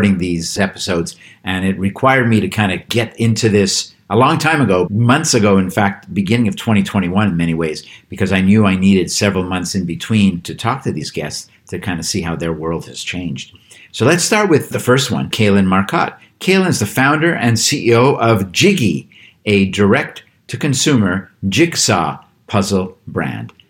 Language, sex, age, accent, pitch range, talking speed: English, male, 50-69, American, 95-120 Hz, 180 wpm